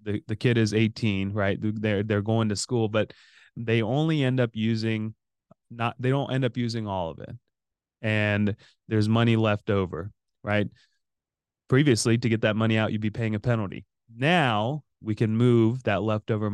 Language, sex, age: English, male, 20-39